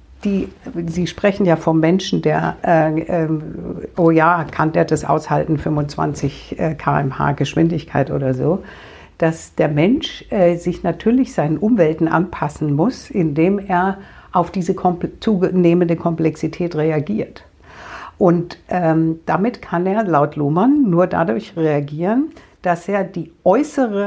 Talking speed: 125 wpm